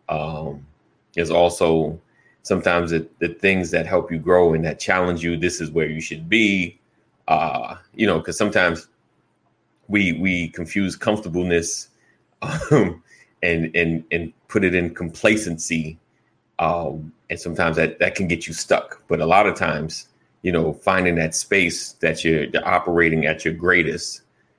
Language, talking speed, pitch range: English, 155 wpm, 80-90 Hz